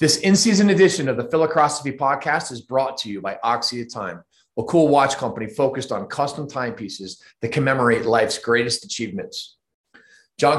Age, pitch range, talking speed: 30-49, 115-145 Hz, 165 wpm